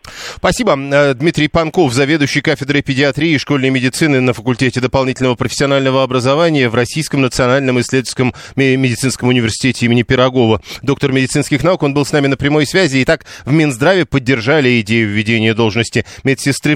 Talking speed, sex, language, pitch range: 145 wpm, male, Russian, 120-140 Hz